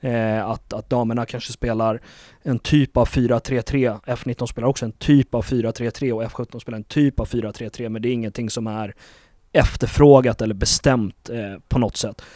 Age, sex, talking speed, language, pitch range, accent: 30-49, male, 175 wpm, Swedish, 110-130 Hz, native